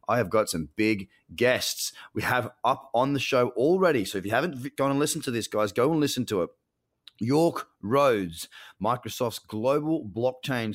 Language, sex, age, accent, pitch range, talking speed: English, male, 30-49, Australian, 95-125 Hz, 185 wpm